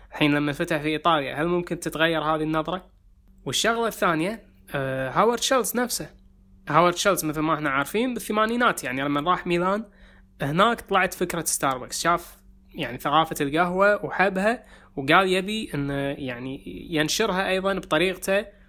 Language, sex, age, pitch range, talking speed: English, male, 20-39, 140-180 Hz, 135 wpm